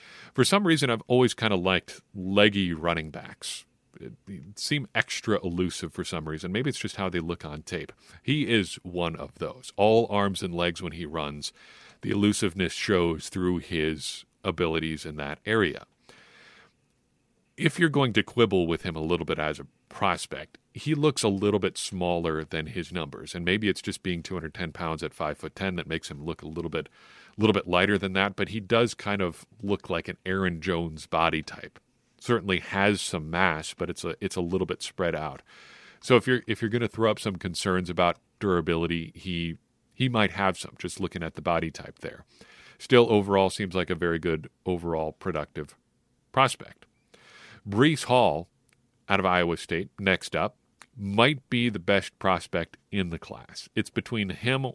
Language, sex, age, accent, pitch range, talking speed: English, male, 50-69, American, 85-110 Hz, 185 wpm